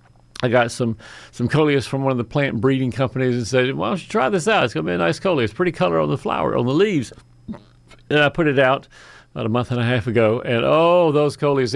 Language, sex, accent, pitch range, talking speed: English, male, American, 115-145 Hz, 260 wpm